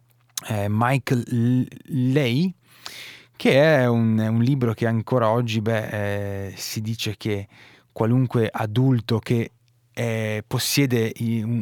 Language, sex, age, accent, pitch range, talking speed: Italian, male, 20-39, native, 105-125 Hz, 105 wpm